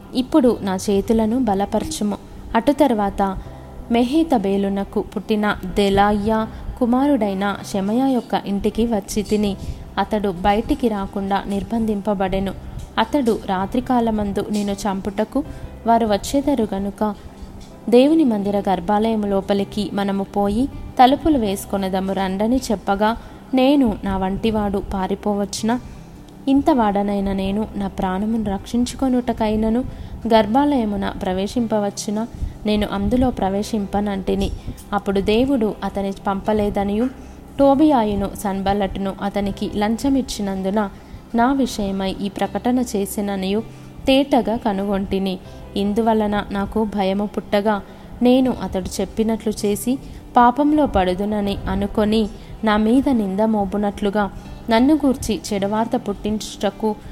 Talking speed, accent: 90 wpm, native